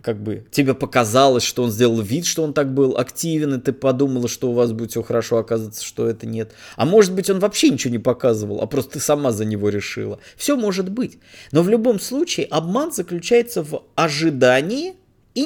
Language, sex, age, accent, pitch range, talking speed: Russian, male, 20-39, native, 120-175 Hz, 210 wpm